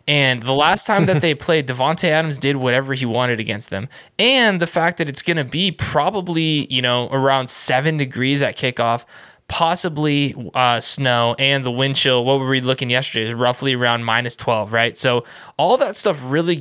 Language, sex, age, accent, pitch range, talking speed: English, male, 20-39, American, 125-150 Hz, 195 wpm